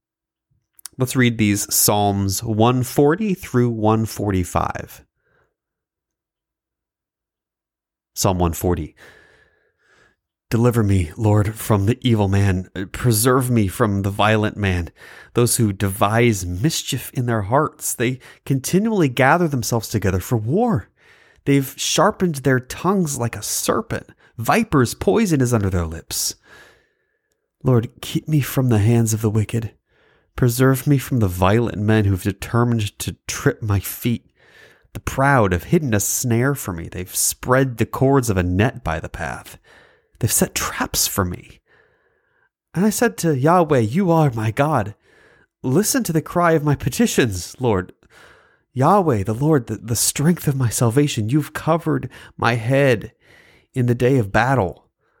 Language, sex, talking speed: English, male, 140 wpm